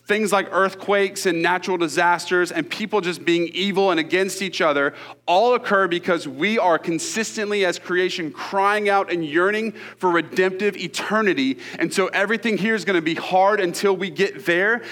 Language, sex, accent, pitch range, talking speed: English, male, American, 165-215 Hz, 170 wpm